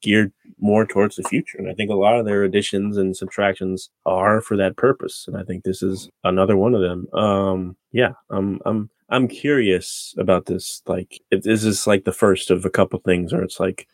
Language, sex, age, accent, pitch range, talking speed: English, male, 20-39, American, 95-115 Hz, 220 wpm